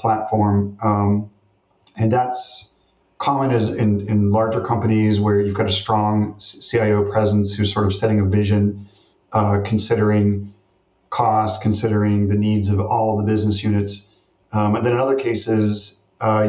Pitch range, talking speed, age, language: 100-110 Hz, 155 wpm, 40-59, English